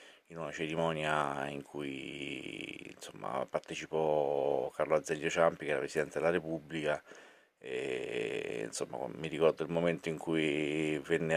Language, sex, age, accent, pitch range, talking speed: Italian, male, 30-49, native, 75-90 Hz, 125 wpm